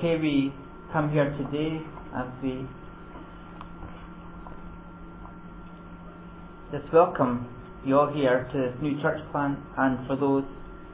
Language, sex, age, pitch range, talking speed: English, male, 40-59, 125-150 Hz, 105 wpm